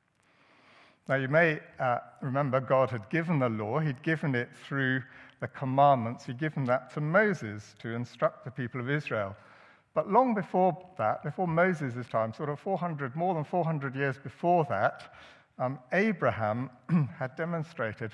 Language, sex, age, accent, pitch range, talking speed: English, male, 60-79, British, 120-155 Hz, 150 wpm